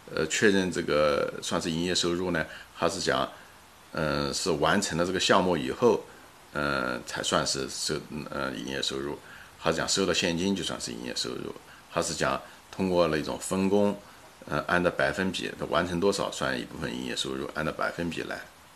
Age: 50-69